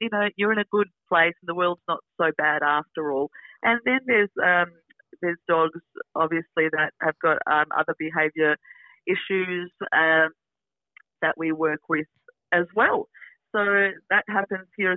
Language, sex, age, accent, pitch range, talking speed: English, female, 30-49, Australian, 160-195 Hz, 160 wpm